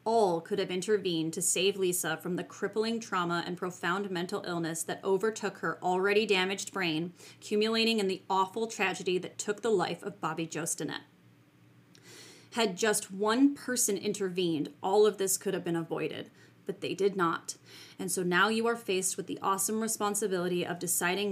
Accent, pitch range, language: American, 180-205 Hz, English